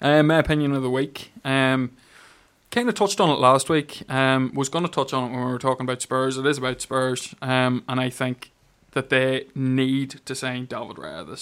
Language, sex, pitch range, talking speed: English, male, 130-140 Hz, 225 wpm